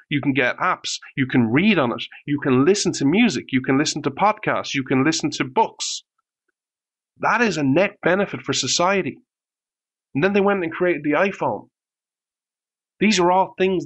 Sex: male